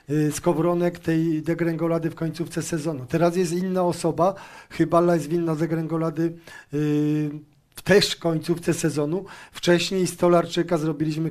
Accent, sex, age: native, male, 40-59